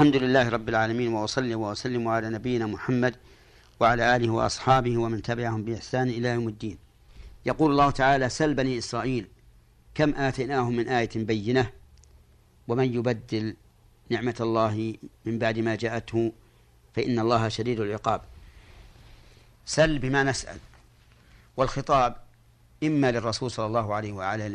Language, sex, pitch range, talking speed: Arabic, male, 115-125 Hz, 125 wpm